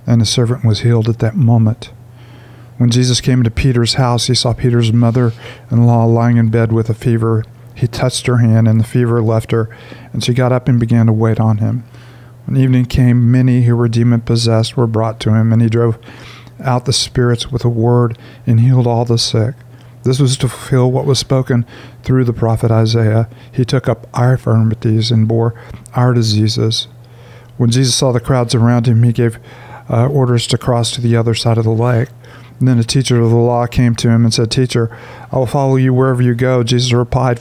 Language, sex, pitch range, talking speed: English, male, 115-125 Hz, 205 wpm